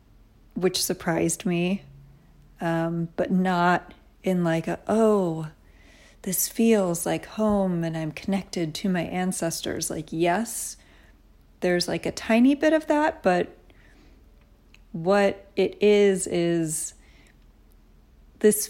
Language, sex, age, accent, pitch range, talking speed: English, female, 30-49, American, 165-200 Hz, 110 wpm